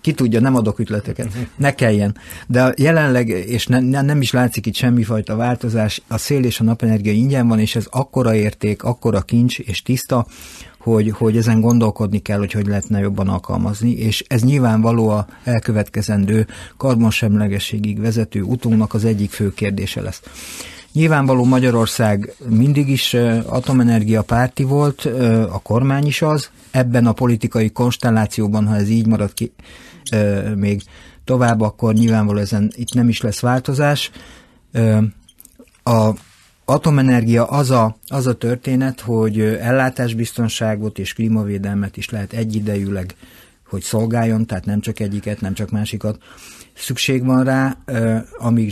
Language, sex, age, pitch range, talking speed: Hungarian, male, 50-69, 105-125 Hz, 135 wpm